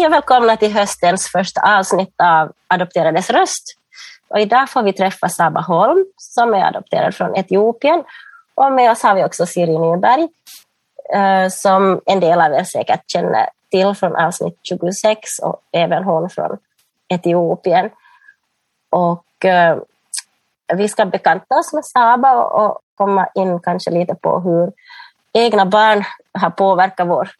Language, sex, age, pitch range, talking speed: Finnish, female, 30-49, 180-250 Hz, 140 wpm